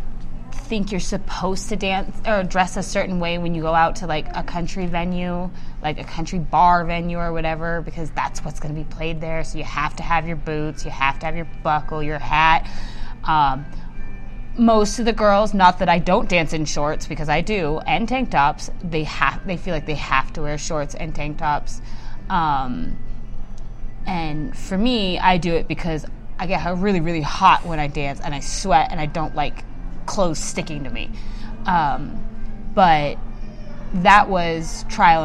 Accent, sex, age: American, female, 20-39